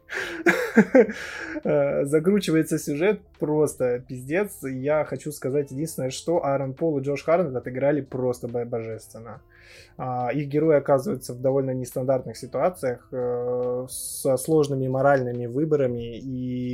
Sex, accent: male, native